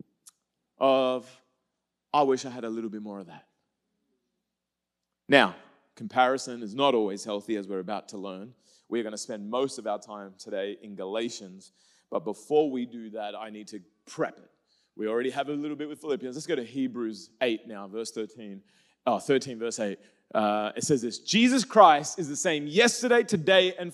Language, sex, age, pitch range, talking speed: English, male, 30-49, 120-205 Hz, 190 wpm